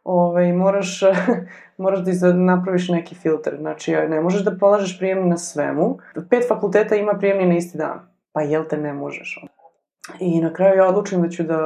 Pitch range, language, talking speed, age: 155-190 Hz, English, 175 wpm, 20-39